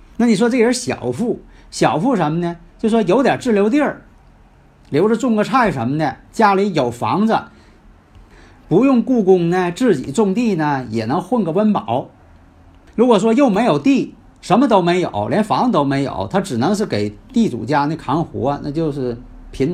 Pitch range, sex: 130-215 Hz, male